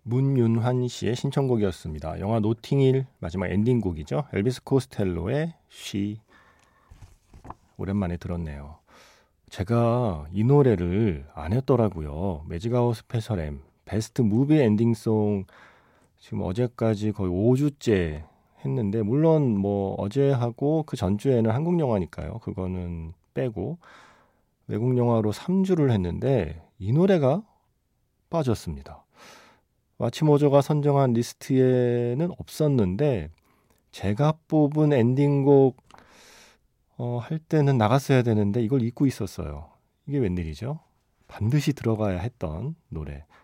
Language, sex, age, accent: Korean, male, 40-59, native